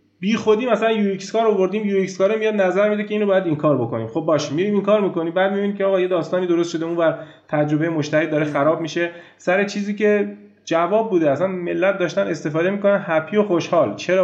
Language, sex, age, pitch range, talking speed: Persian, male, 30-49, 155-195 Hz, 225 wpm